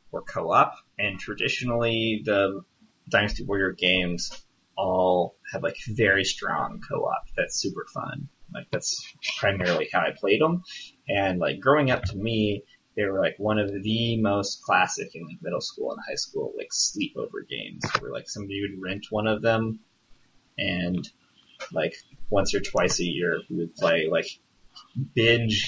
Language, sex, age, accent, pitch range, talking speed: English, male, 20-39, American, 95-115 Hz, 155 wpm